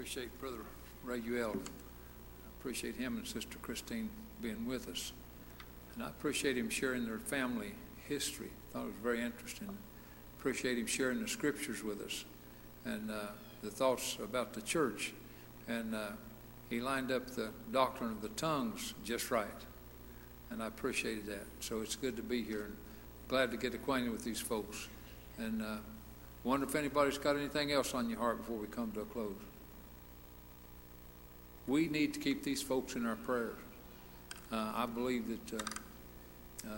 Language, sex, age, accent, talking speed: English, male, 60-79, American, 170 wpm